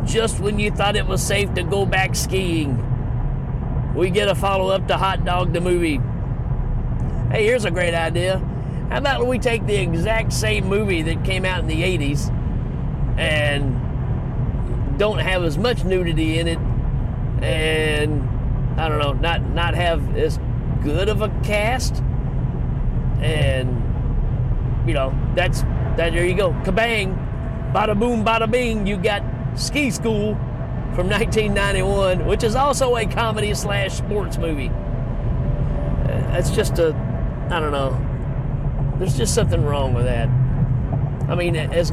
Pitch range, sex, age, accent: 125-155 Hz, male, 40-59, American